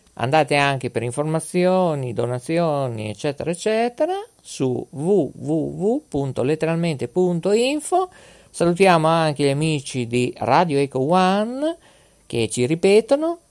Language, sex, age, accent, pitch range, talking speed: Italian, male, 50-69, native, 130-190 Hz, 90 wpm